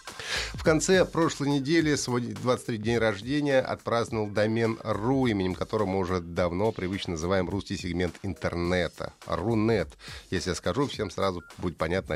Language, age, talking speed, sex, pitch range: Russian, 30-49, 145 wpm, male, 100-140 Hz